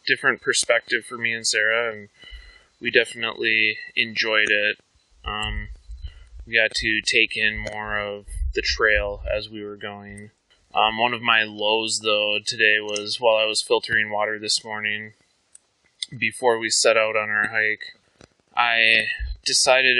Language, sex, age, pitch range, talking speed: English, male, 20-39, 105-125 Hz, 145 wpm